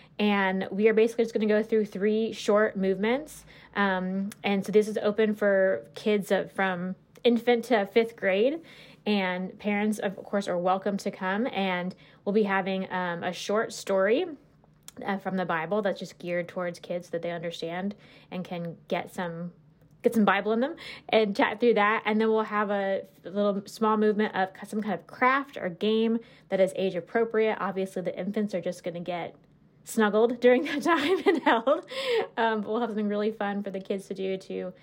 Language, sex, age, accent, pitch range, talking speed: English, female, 20-39, American, 185-220 Hz, 190 wpm